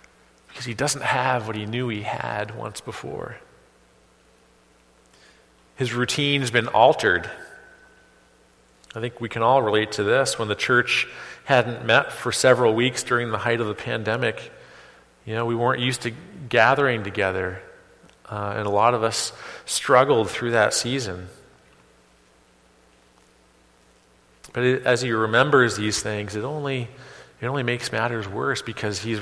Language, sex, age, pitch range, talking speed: English, male, 40-59, 95-130 Hz, 145 wpm